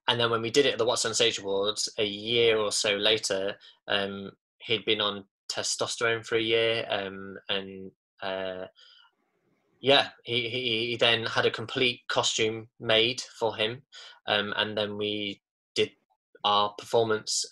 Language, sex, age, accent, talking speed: English, male, 10-29, British, 160 wpm